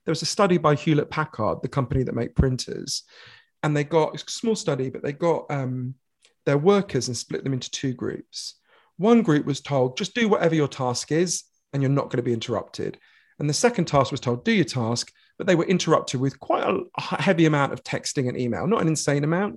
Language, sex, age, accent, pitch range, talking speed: English, male, 40-59, British, 130-170 Hz, 220 wpm